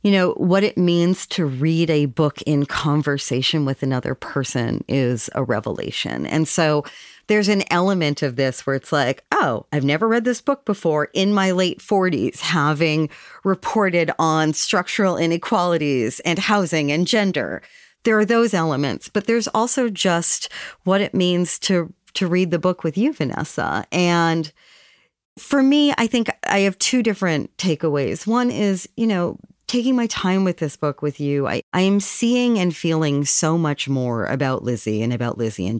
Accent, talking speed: American, 175 wpm